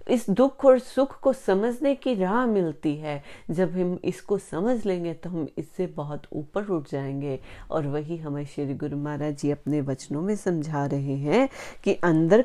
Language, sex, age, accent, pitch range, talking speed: Hindi, female, 30-49, native, 150-200 Hz, 180 wpm